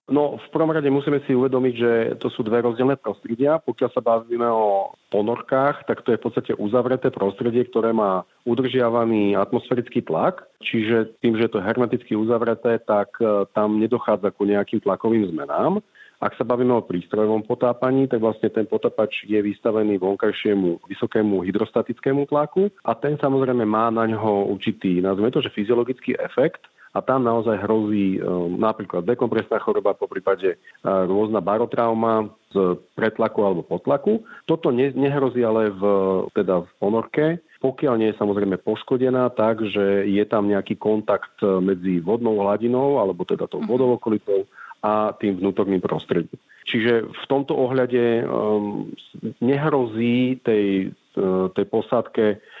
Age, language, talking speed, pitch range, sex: 40-59, Slovak, 150 wpm, 105-130 Hz, male